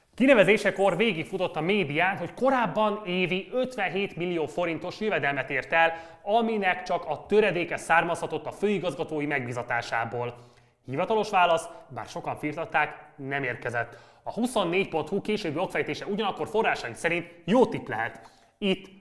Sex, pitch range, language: male, 140-190 Hz, Hungarian